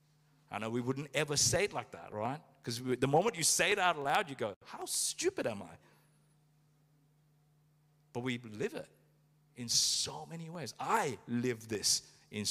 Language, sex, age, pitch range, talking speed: English, male, 50-69, 130-165 Hz, 175 wpm